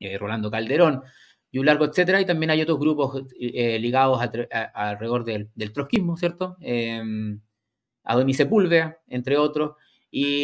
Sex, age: male, 20-39